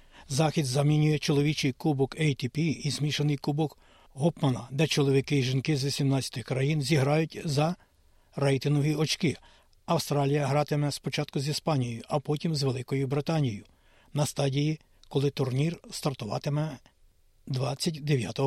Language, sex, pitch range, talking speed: Ukrainian, male, 135-155 Hz, 115 wpm